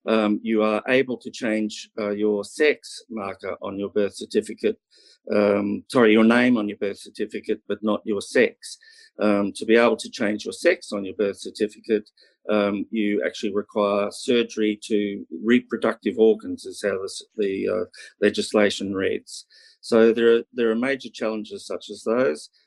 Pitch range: 105-120 Hz